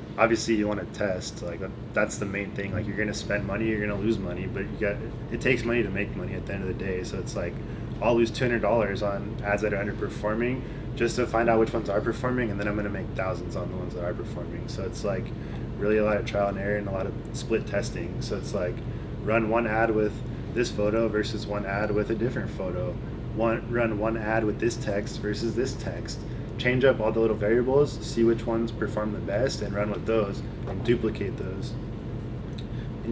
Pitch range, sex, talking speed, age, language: 105-115 Hz, male, 230 wpm, 20-39, English